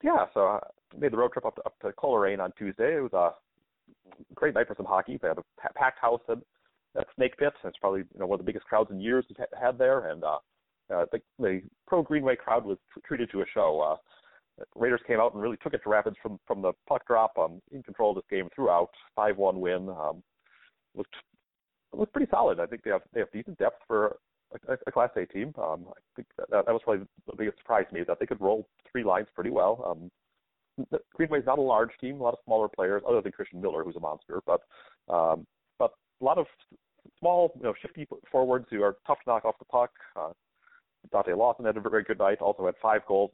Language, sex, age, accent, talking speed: English, male, 30-49, American, 240 wpm